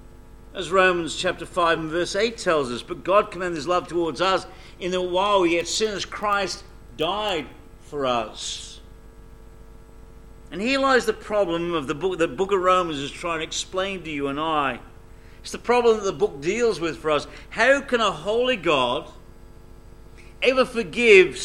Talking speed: 175 wpm